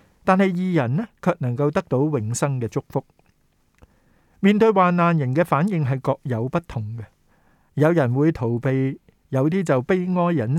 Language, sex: Chinese, male